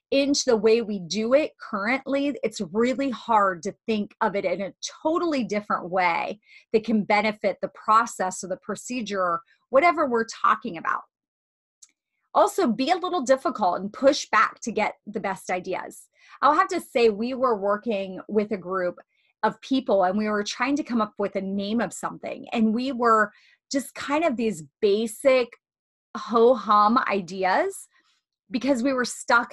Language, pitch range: English, 205-270 Hz